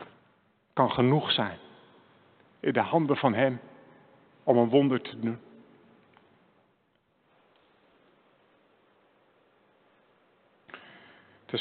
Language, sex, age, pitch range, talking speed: English, male, 50-69, 130-170 Hz, 70 wpm